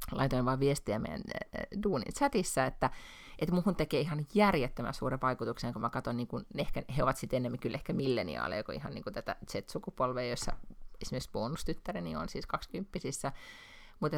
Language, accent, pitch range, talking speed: Finnish, native, 130-200 Hz, 160 wpm